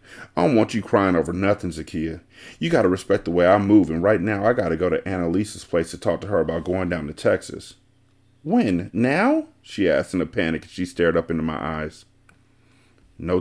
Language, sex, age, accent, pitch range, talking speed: English, male, 40-59, American, 90-130 Hz, 210 wpm